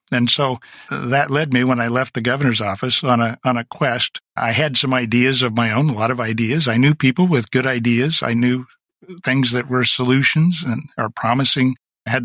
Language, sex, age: English, male, 50-69